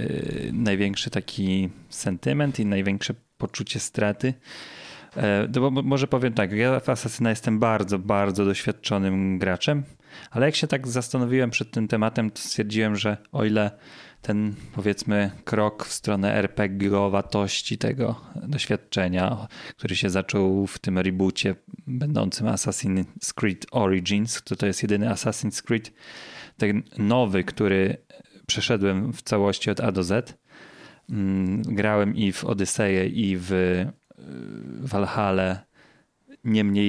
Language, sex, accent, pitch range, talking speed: Polish, male, native, 100-120 Hz, 120 wpm